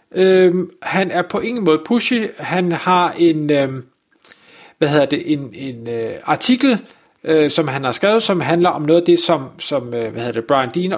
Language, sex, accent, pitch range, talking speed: Danish, male, native, 155-195 Hz, 200 wpm